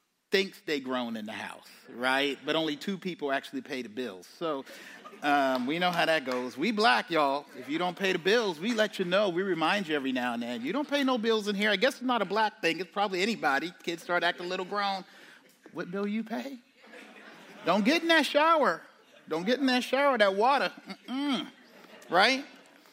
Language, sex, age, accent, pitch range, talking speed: English, male, 40-59, American, 165-245 Hz, 215 wpm